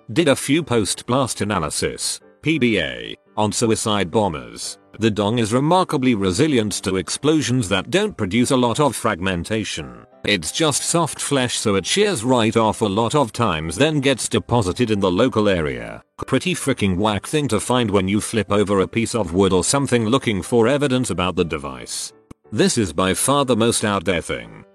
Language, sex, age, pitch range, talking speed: English, male, 40-59, 100-130 Hz, 180 wpm